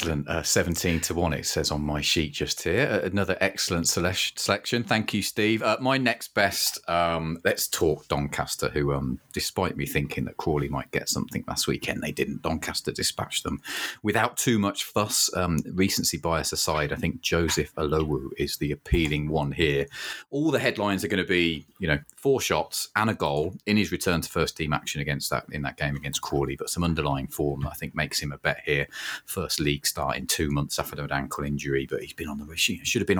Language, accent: English, British